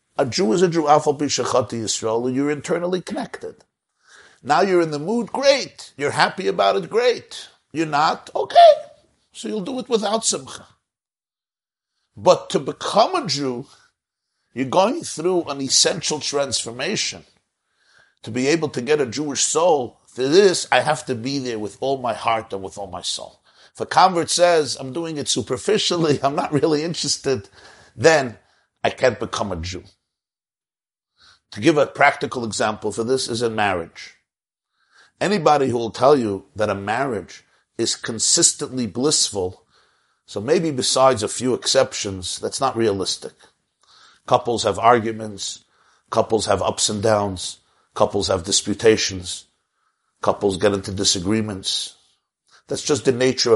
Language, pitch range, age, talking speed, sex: English, 105-150 Hz, 50-69, 145 wpm, male